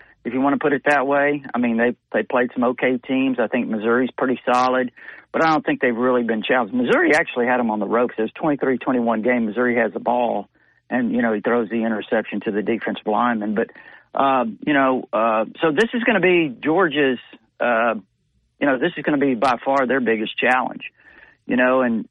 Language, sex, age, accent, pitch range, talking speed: English, male, 40-59, American, 120-135 Hz, 225 wpm